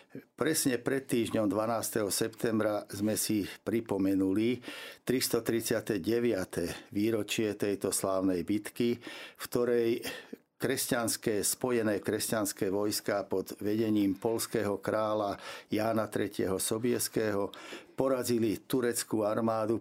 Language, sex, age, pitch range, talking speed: Slovak, male, 60-79, 105-120 Hz, 90 wpm